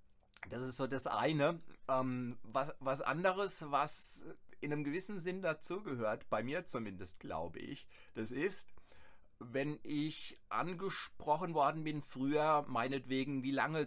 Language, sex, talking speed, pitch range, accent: German, male, 135 wpm, 115-150 Hz, German